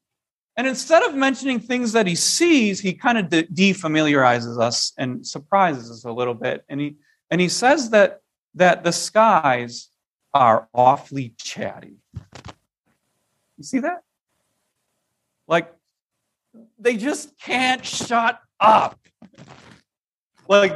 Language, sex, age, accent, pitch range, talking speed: English, male, 40-59, American, 175-245 Hz, 120 wpm